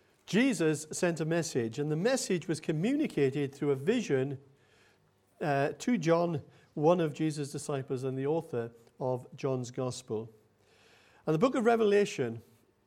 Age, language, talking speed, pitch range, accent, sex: 50-69, English, 140 wpm, 135-180 Hz, British, male